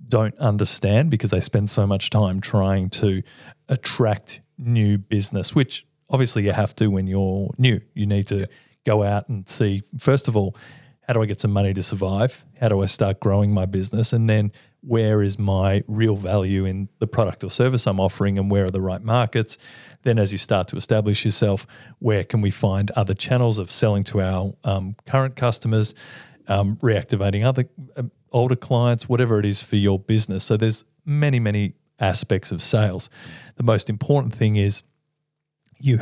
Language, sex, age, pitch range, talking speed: English, male, 40-59, 105-125 Hz, 185 wpm